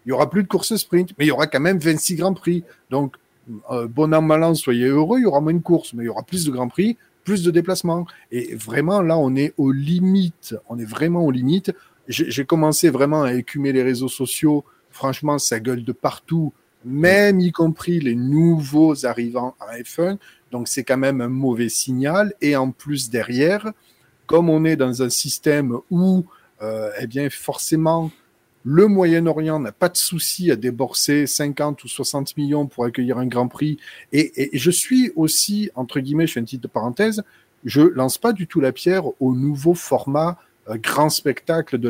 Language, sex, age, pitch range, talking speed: French, male, 40-59, 130-170 Hz, 200 wpm